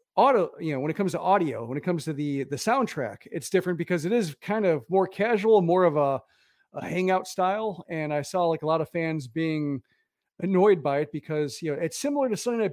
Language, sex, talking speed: English, male, 235 wpm